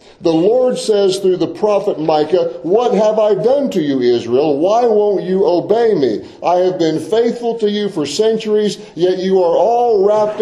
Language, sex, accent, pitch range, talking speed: English, male, American, 170-220 Hz, 185 wpm